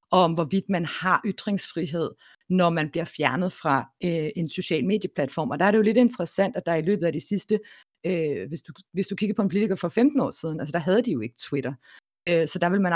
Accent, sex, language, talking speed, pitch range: native, female, Danish, 245 wpm, 160-195 Hz